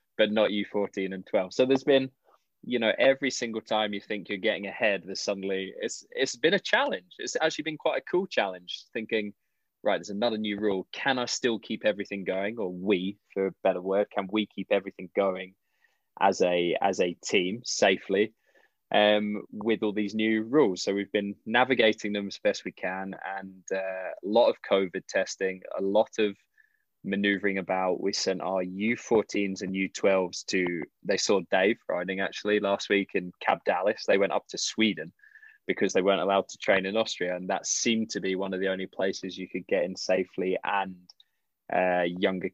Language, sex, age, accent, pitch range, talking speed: English, male, 20-39, British, 95-115 Hz, 190 wpm